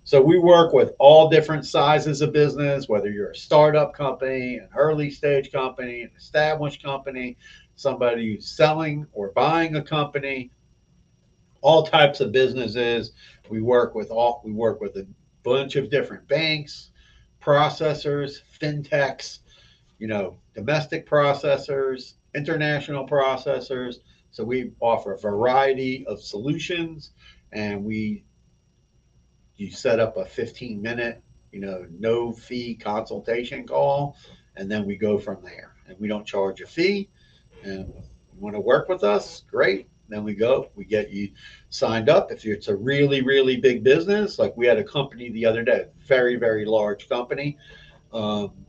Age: 50-69